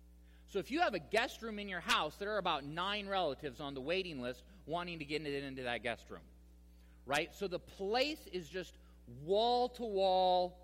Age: 30-49